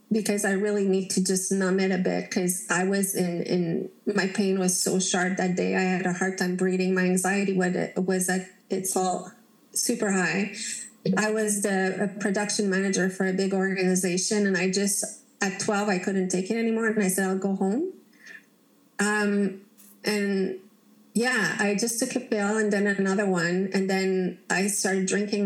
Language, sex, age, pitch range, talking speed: English, female, 30-49, 185-210 Hz, 190 wpm